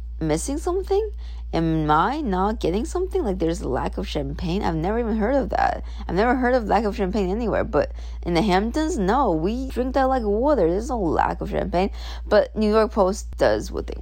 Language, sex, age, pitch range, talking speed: English, female, 20-39, 145-195 Hz, 210 wpm